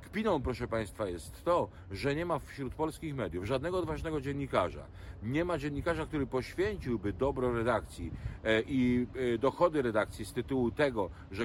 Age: 40-59